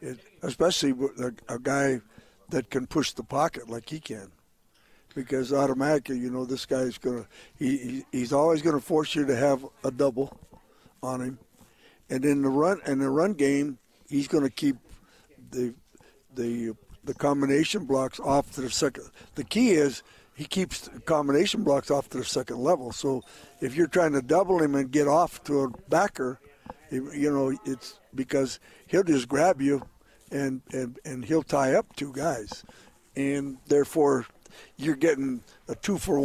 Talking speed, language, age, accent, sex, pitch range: 175 wpm, English, 60-79, American, male, 130-155 Hz